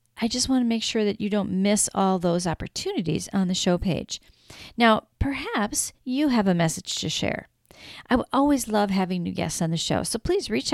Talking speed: 210 wpm